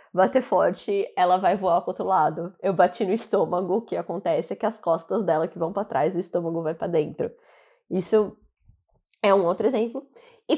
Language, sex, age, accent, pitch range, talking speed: Portuguese, female, 20-39, Brazilian, 190-255 Hz, 200 wpm